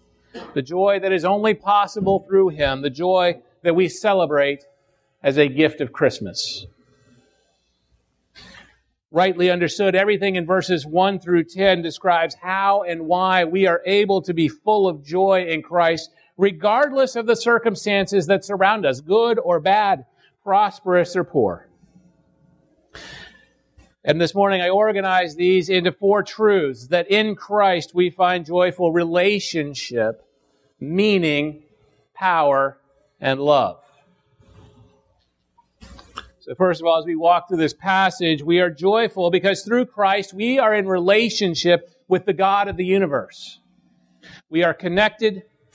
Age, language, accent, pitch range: 40-59, English, American, 165-195 Hz